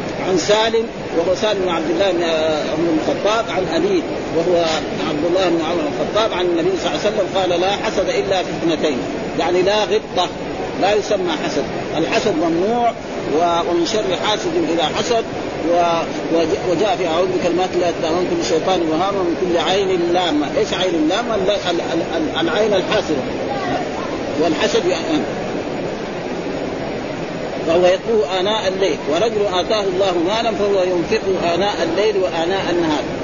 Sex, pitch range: male, 175-215 Hz